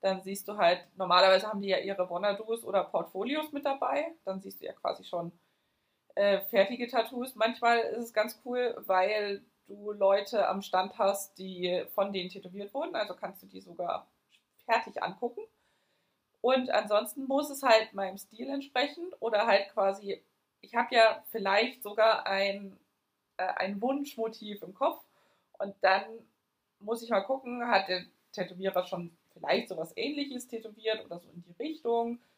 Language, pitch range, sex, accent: German, 190-240 Hz, female, German